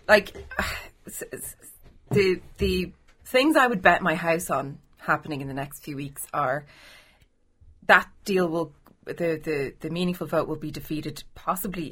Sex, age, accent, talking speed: female, 30-49, Irish, 145 wpm